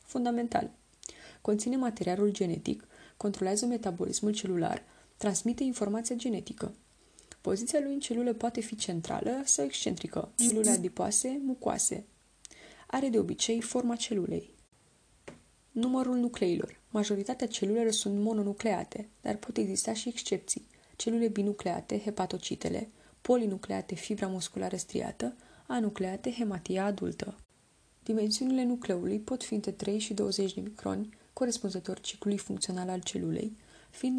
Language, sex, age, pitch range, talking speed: Romanian, female, 20-39, 190-230 Hz, 110 wpm